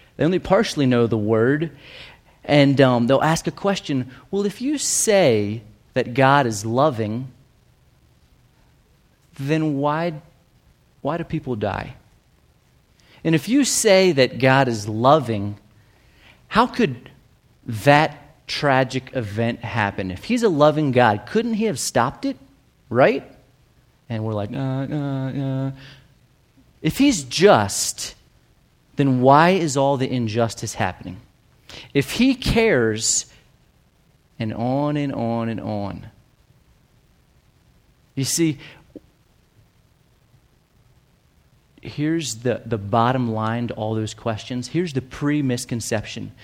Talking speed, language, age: 115 wpm, English, 30-49